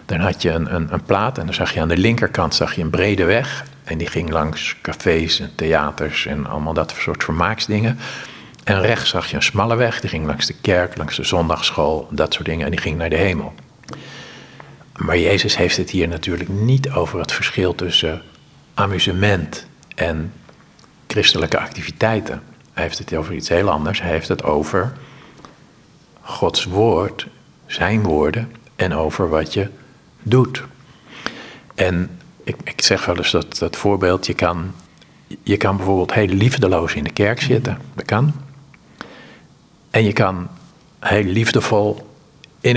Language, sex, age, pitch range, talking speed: Dutch, male, 50-69, 85-115 Hz, 165 wpm